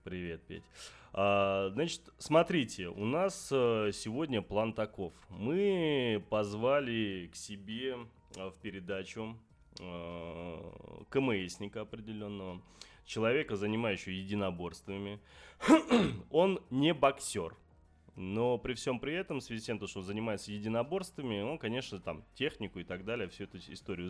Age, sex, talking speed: 20-39, male, 120 wpm